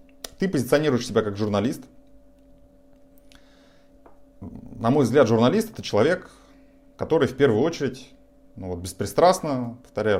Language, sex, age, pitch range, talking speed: Russian, male, 30-49, 105-165 Hz, 105 wpm